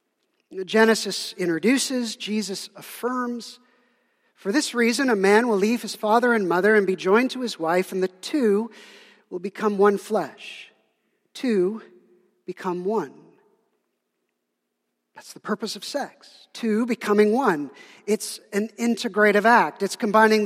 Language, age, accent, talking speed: English, 50-69, American, 130 wpm